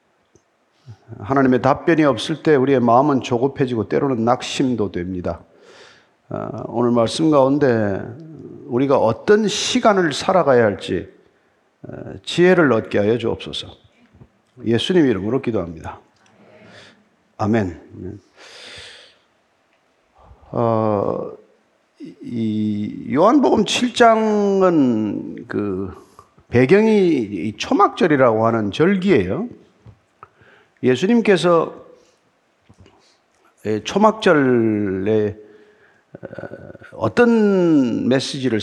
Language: Korean